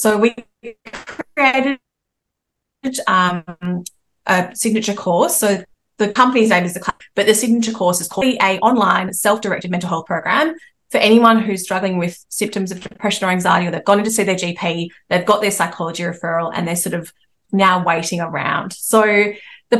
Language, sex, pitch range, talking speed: English, female, 185-225 Hz, 175 wpm